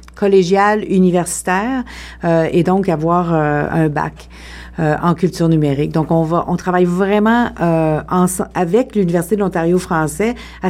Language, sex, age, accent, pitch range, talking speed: French, female, 50-69, Canadian, 165-195 Hz, 150 wpm